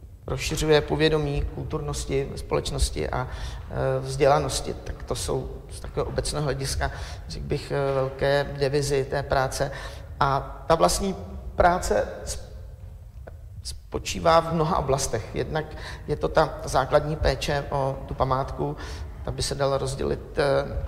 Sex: male